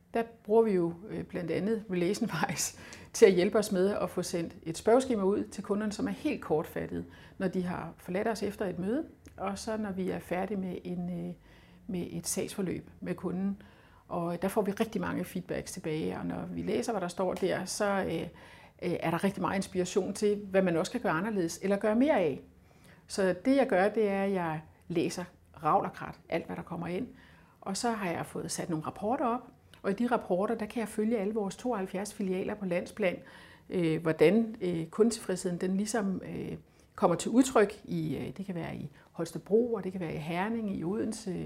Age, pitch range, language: 60-79, 175-220 Hz, Danish